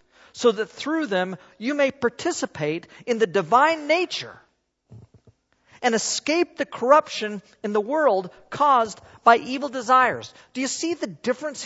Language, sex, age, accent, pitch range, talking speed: English, male, 50-69, American, 165-260 Hz, 140 wpm